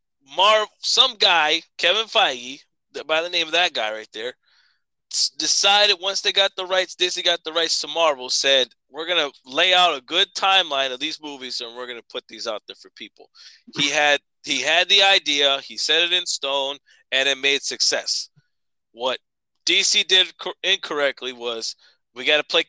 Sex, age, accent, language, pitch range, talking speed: male, 20-39, American, English, 145-185 Hz, 185 wpm